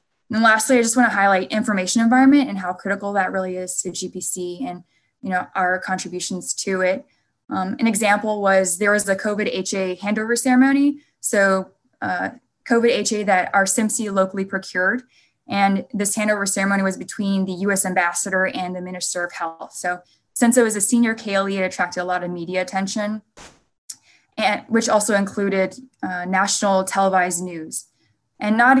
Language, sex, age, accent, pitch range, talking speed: English, female, 20-39, American, 185-215 Hz, 170 wpm